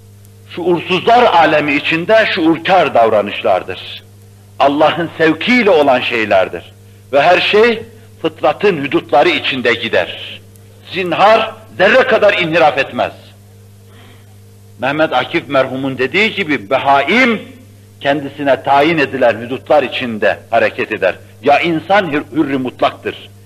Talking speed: 95 wpm